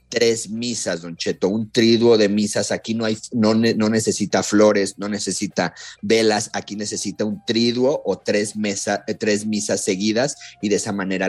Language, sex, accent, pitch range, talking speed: Spanish, male, Mexican, 95-115 Hz, 170 wpm